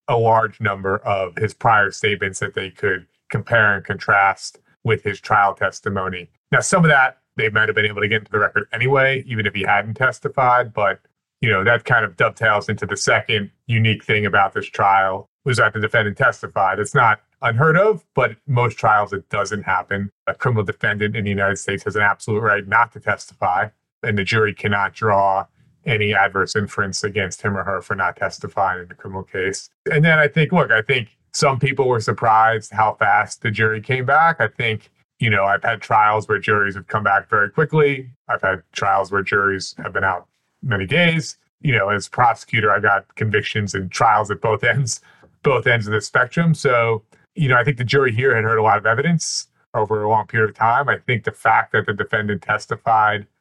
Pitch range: 100-130 Hz